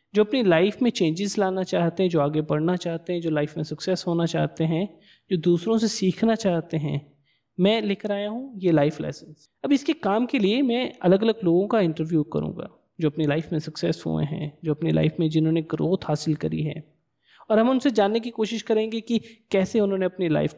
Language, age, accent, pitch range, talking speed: Hindi, 20-39, native, 155-200 Hz, 215 wpm